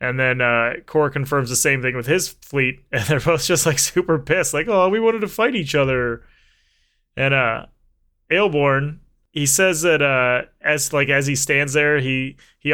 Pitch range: 125-150 Hz